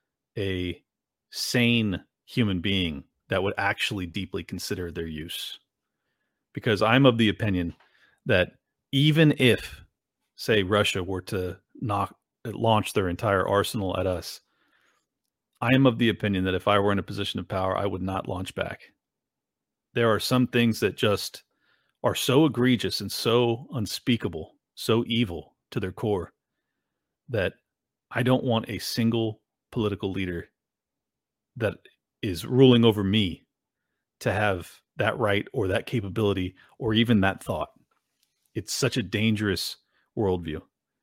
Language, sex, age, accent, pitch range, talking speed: English, male, 40-59, American, 95-115 Hz, 140 wpm